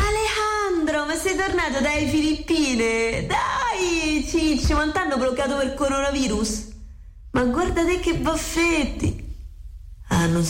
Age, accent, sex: 30-49, native, female